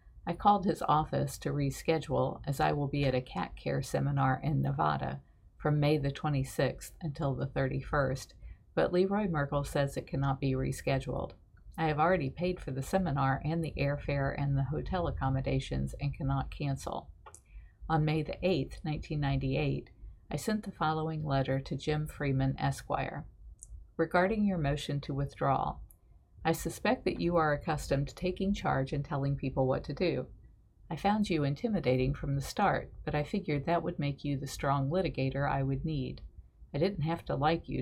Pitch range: 135-160 Hz